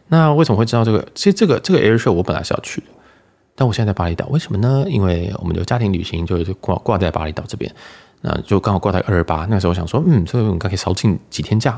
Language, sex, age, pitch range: Chinese, male, 20-39, 90-115 Hz